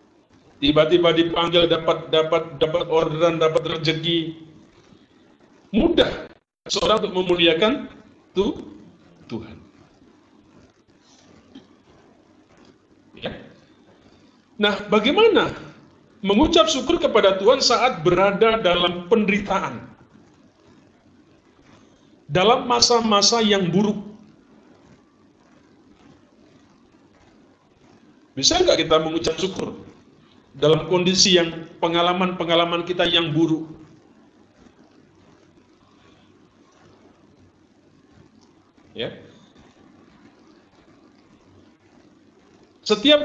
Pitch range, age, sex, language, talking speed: 170-250 Hz, 50-69, male, Indonesian, 60 wpm